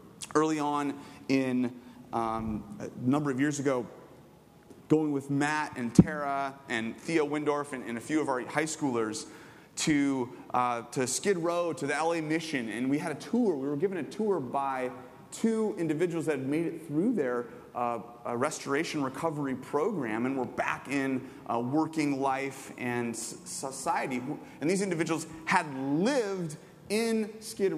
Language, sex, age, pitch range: English, male, 30-49, 135-175 Hz